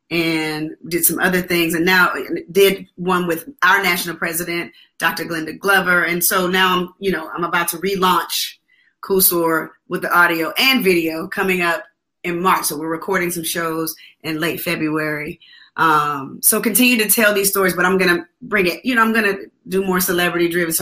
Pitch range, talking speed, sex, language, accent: 165-195 Hz, 195 wpm, female, English, American